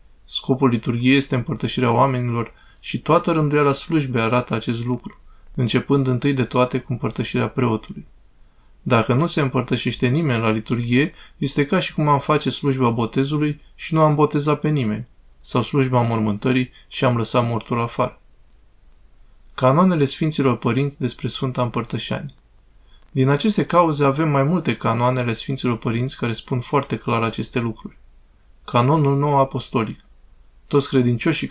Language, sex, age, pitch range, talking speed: Romanian, male, 20-39, 120-140 Hz, 145 wpm